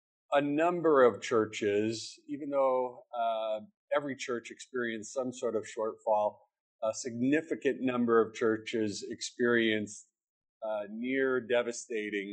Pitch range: 110-135 Hz